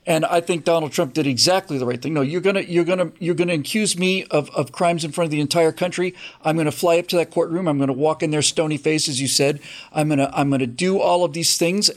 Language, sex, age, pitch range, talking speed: English, male, 40-59, 150-190 Hz, 270 wpm